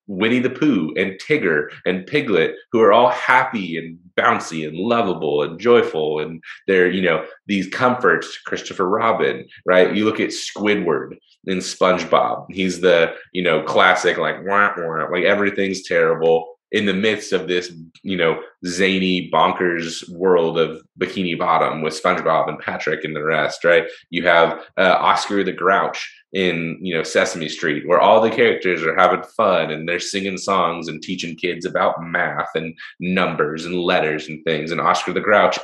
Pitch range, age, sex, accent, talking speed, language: 80-100 Hz, 30-49, male, American, 165 wpm, English